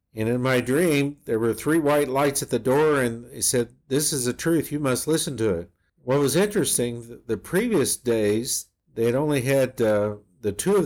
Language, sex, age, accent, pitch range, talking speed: English, male, 50-69, American, 105-125 Hz, 210 wpm